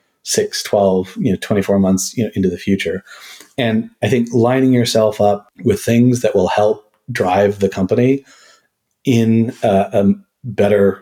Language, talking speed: English, 160 wpm